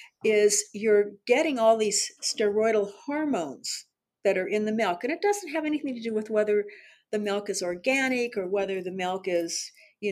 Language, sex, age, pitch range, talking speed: English, female, 50-69, 195-260 Hz, 185 wpm